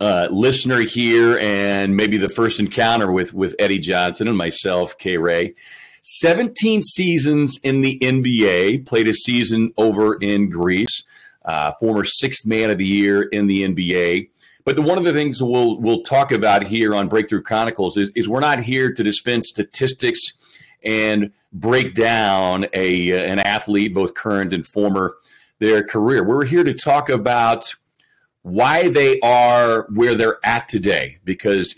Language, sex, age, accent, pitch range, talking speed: English, male, 40-59, American, 100-125 Hz, 160 wpm